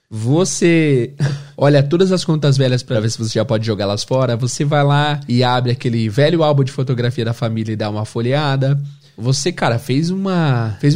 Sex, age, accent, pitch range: male, 20-39, Brazilian, 135-165 Hz